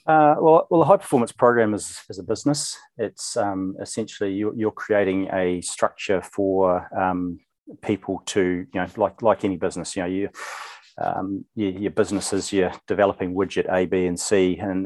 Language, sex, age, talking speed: English, male, 40-59, 180 wpm